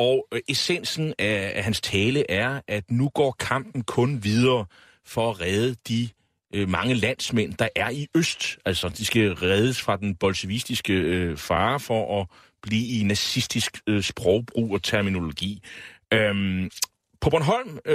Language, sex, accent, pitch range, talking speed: Danish, male, native, 100-135 Hz, 135 wpm